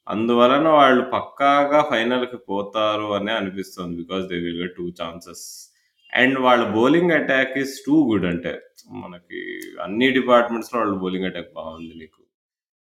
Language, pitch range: Telugu, 90-120 Hz